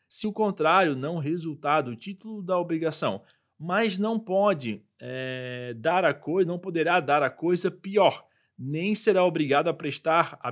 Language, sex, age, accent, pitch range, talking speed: Portuguese, male, 20-39, Brazilian, 140-195 Hz, 160 wpm